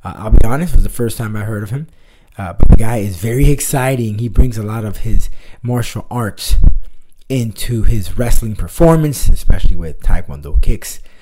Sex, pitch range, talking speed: male, 90-125 Hz, 195 wpm